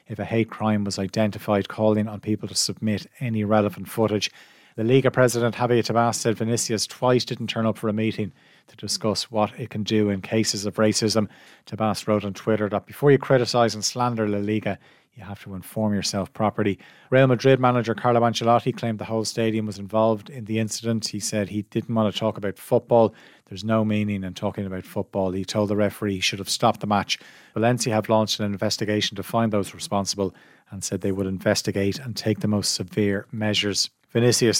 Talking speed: 205 wpm